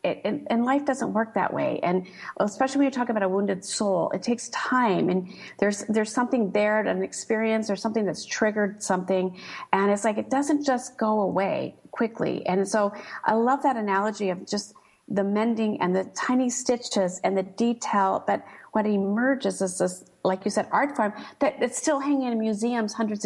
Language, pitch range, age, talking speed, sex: English, 190-245 Hz, 40-59, 195 wpm, female